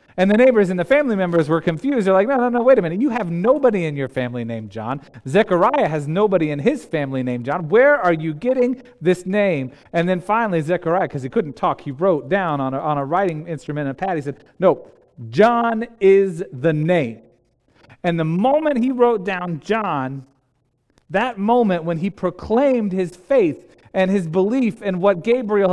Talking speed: 200 wpm